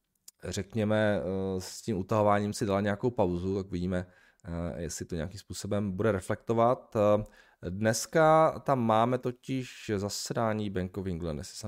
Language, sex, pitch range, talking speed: Czech, male, 90-115 Hz, 130 wpm